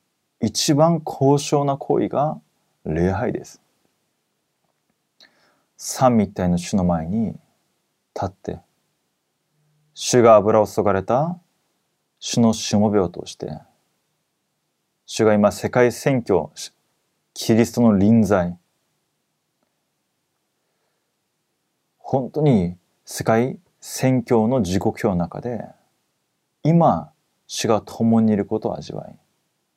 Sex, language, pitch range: male, Korean, 100-130 Hz